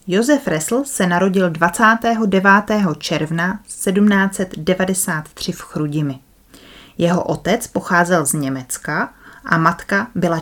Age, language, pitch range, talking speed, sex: 30-49, Czech, 165-210 Hz, 100 wpm, female